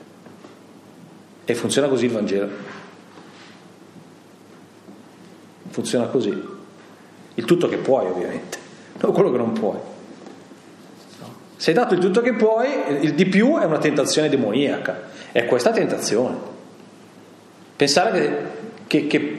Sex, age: male, 40-59